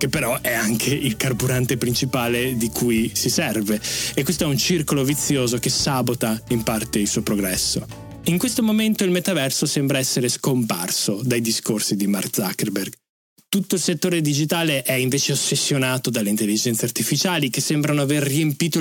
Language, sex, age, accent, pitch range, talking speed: Italian, male, 20-39, native, 120-180 Hz, 165 wpm